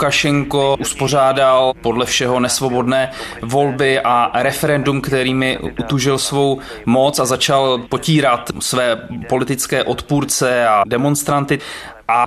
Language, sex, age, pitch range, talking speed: Czech, male, 20-39, 125-150 Hz, 100 wpm